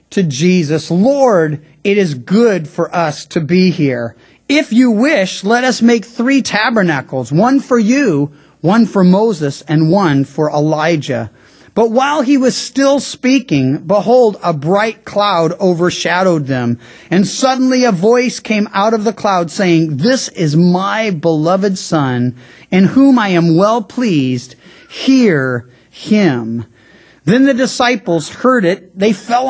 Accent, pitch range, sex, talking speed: American, 160-230 Hz, male, 145 wpm